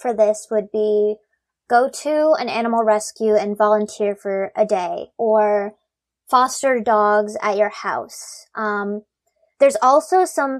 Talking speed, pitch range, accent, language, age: 135 wpm, 215-255 Hz, American, English, 20-39